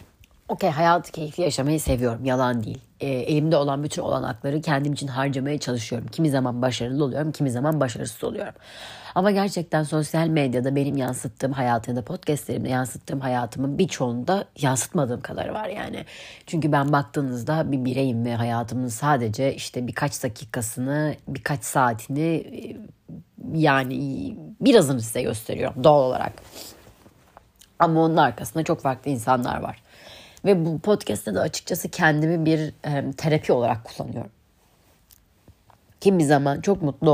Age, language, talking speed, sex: 30-49, Turkish, 130 wpm, female